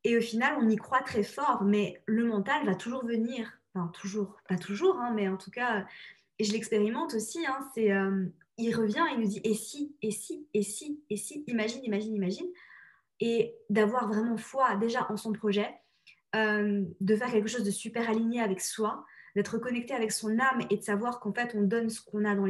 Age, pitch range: 20-39, 205-240 Hz